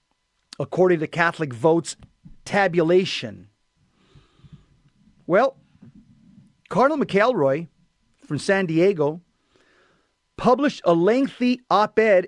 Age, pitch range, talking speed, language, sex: 40-59, 170-215 Hz, 75 wpm, English, male